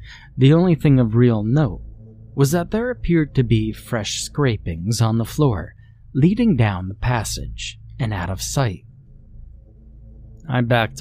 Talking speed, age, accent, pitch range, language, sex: 145 wpm, 30-49, American, 100-125 Hz, English, male